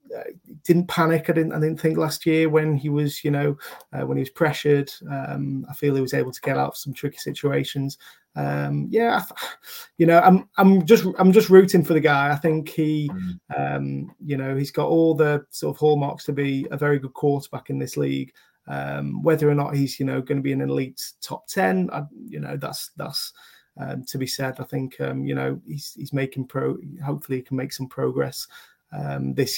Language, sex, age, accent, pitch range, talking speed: English, male, 20-39, British, 135-160 Hz, 225 wpm